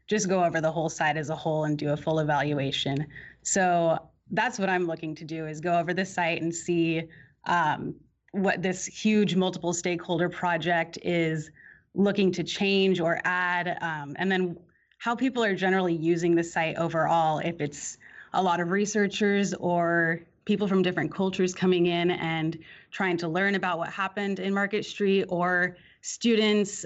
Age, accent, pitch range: 30-49, American, 160-185 Hz